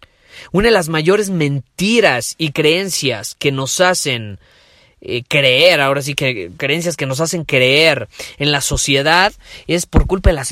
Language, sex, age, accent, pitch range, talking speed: Spanish, male, 30-49, Mexican, 125-160 Hz, 160 wpm